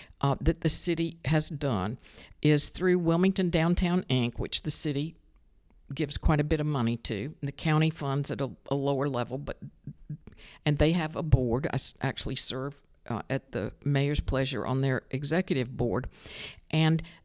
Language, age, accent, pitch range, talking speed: English, 60-79, American, 135-165 Hz, 165 wpm